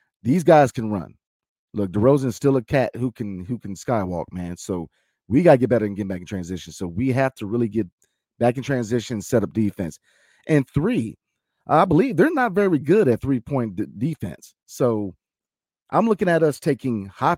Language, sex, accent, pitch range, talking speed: English, male, American, 100-140 Hz, 205 wpm